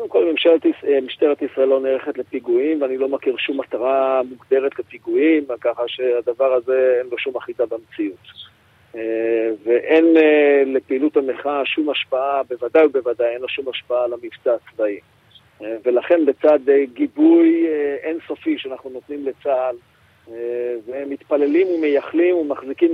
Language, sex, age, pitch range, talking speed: Hebrew, male, 40-59, 130-175 Hz, 135 wpm